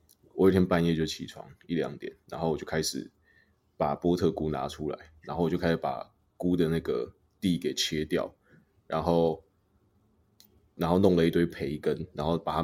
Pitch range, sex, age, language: 80-90 Hz, male, 20-39, Chinese